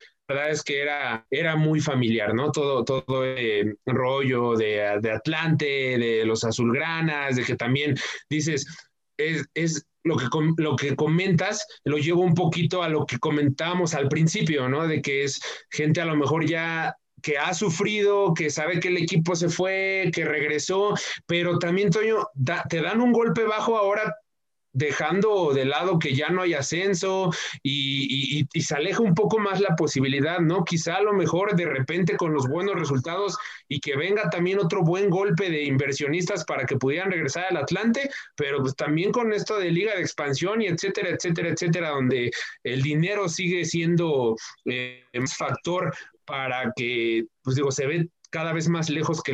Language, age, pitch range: Spanish, 30-49, 140-180 Hz